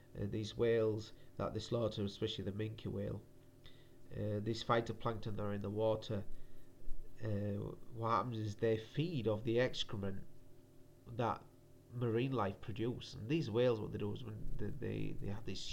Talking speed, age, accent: 165 wpm, 30-49, British